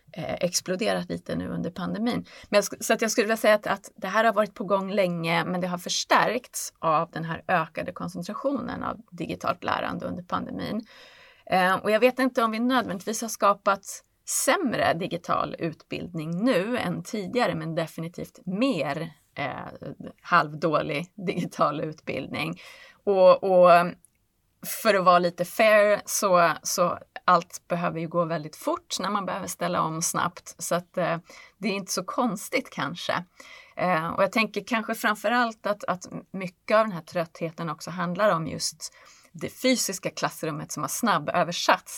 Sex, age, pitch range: female, 30-49, 170-225 Hz